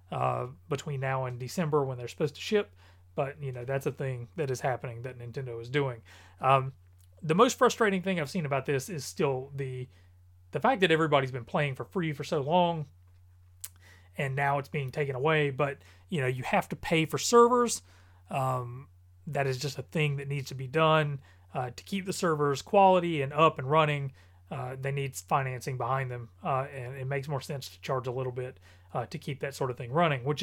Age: 30-49